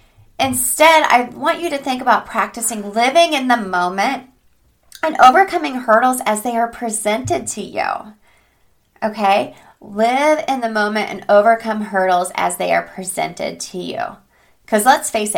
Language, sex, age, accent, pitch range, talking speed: English, female, 30-49, American, 175-235 Hz, 150 wpm